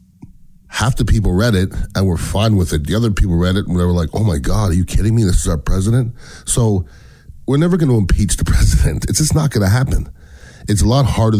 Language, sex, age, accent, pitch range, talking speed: English, male, 40-59, American, 90-115 Hz, 255 wpm